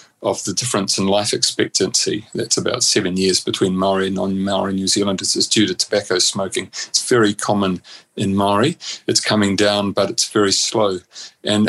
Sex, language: male, English